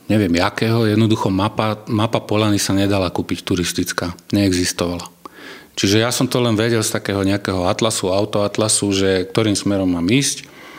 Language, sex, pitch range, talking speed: Slovak, male, 90-110 Hz, 150 wpm